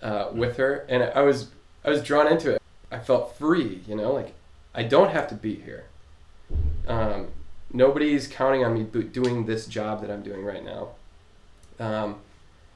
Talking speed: 175 wpm